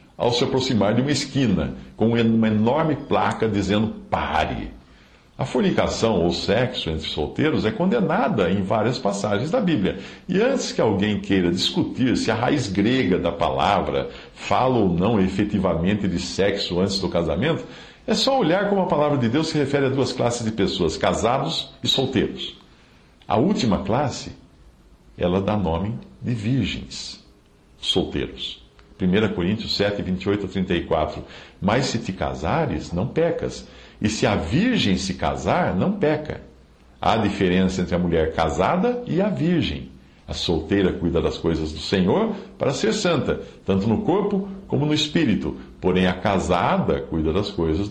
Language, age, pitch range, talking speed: Portuguese, 60-79, 80-115 Hz, 155 wpm